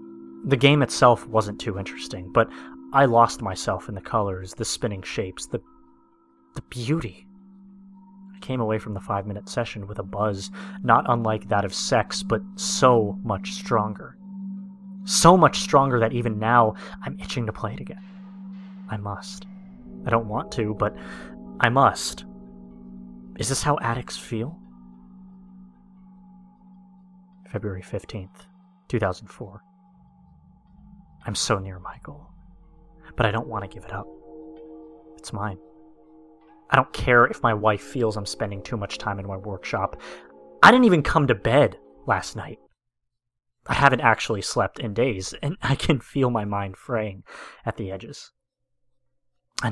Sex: male